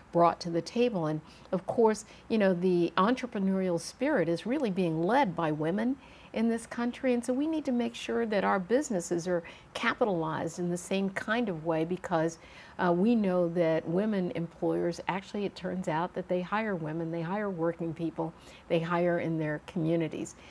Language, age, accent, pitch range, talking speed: English, 60-79, American, 170-210 Hz, 185 wpm